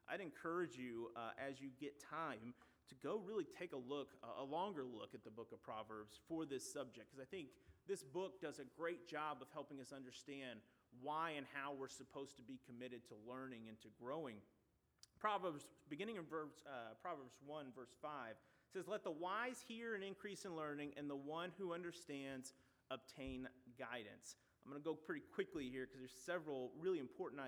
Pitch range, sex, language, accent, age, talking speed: 130-170 Hz, male, English, American, 30-49, 190 wpm